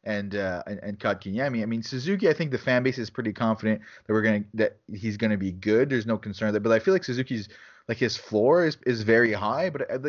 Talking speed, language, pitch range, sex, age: 250 wpm, English, 105-140 Hz, male, 30-49